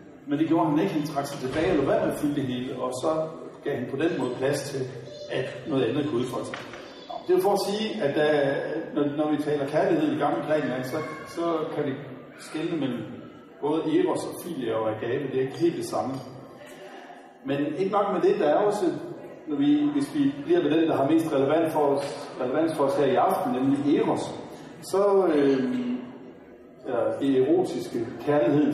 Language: Danish